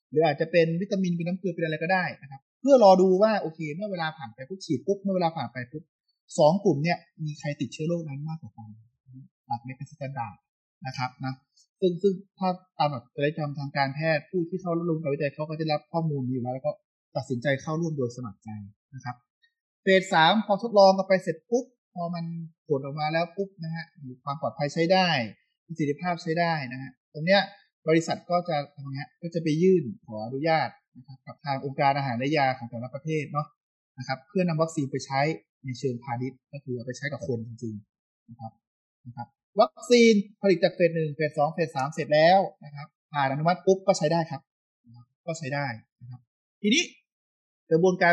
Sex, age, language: male, 20-39, Thai